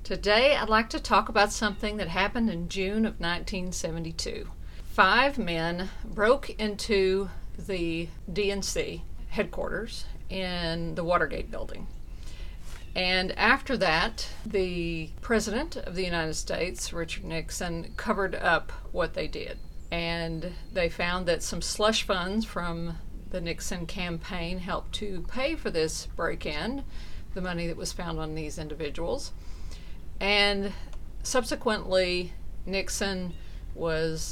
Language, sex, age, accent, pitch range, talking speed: English, female, 50-69, American, 165-205 Hz, 120 wpm